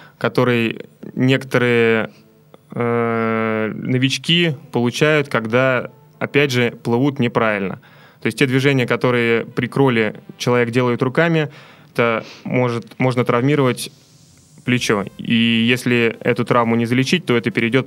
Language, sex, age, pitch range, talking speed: Russian, male, 20-39, 115-135 Hz, 110 wpm